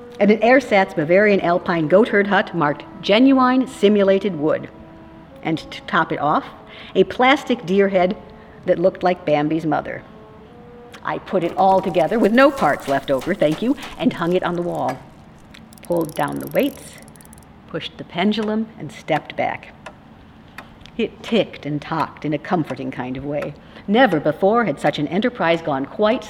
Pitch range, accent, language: 155-230 Hz, American, English